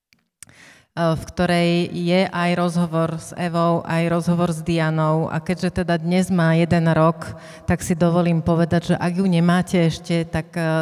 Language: Slovak